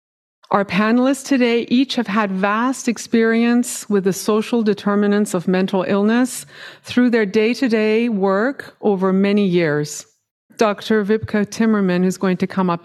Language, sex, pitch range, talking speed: English, female, 185-235 Hz, 140 wpm